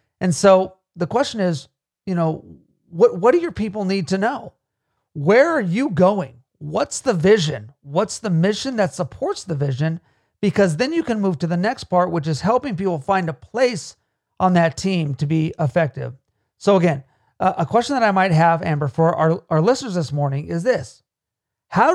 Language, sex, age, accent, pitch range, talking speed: English, male, 40-59, American, 155-200 Hz, 190 wpm